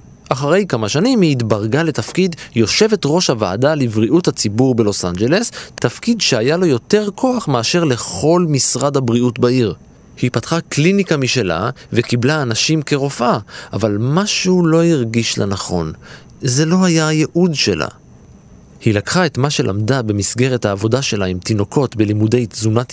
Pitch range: 110-160 Hz